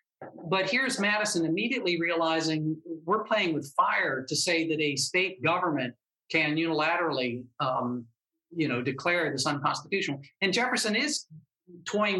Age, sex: 50-69, male